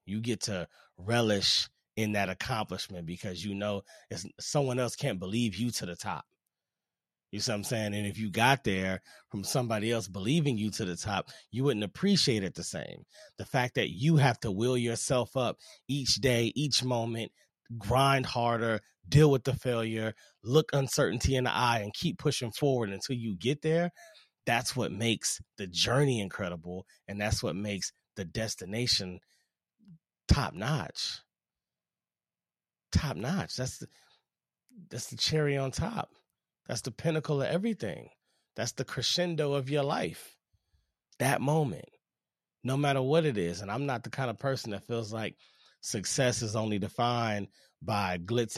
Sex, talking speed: male, 160 wpm